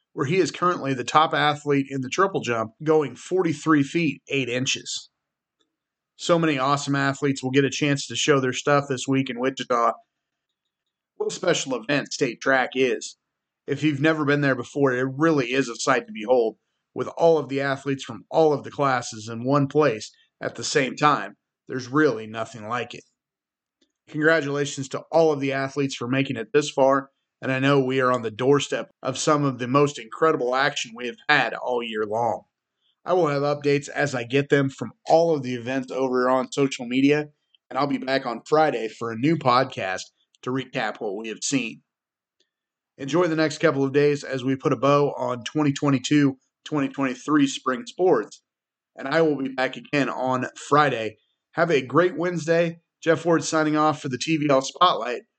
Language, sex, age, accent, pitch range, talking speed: English, male, 30-49, American, 130-150 Hz, 190 wpm